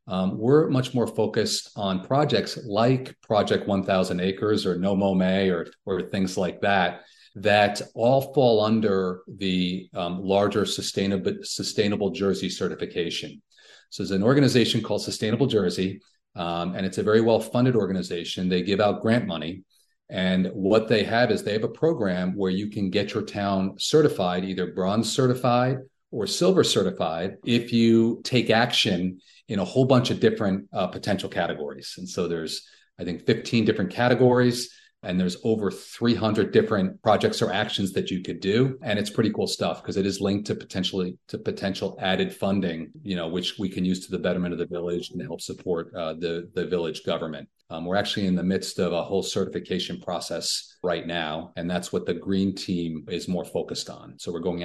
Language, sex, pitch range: English, male, 90-115 Hz